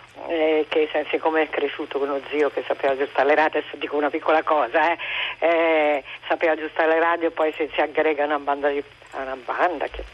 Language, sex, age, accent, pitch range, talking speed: Italian, female, 50-69, native, 145-175 Hz, 215 wpm